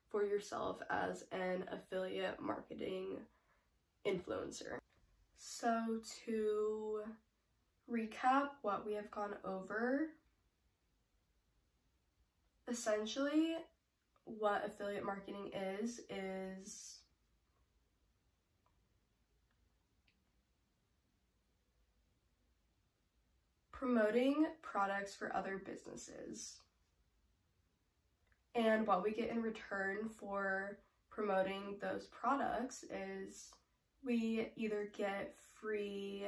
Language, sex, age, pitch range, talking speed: English, female, 10-29, 190-225 Hz, 70 wpm